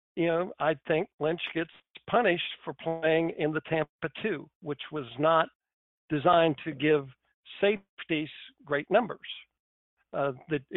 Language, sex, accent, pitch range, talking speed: English, male, American, 145-170 Hz, 135 wpm